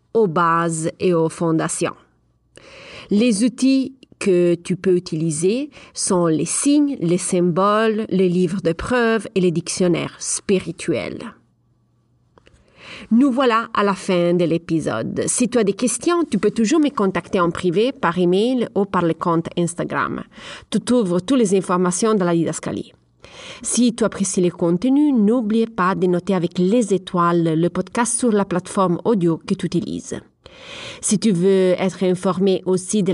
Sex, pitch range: female, 175-225 Hz